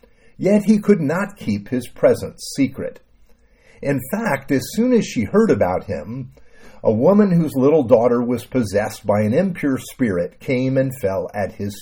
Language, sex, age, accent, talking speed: English, male, 50-69, American, 170 wpm